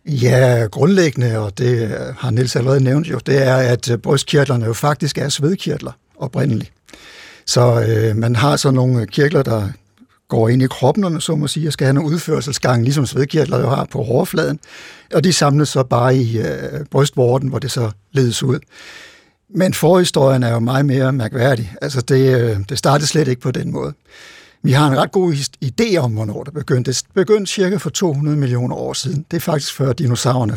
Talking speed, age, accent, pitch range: 190 wpm, 60-79, native, 125-155 Hz